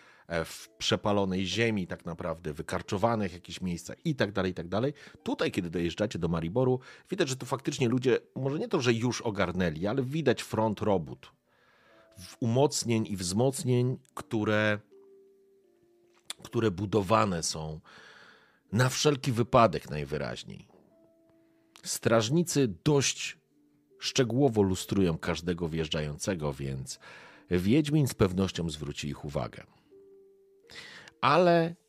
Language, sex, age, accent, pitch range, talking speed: Polish, male, 40-59, native, 85-125 Hz, 115 wpm